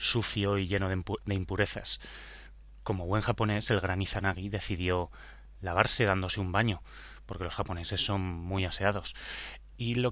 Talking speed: 140 wpm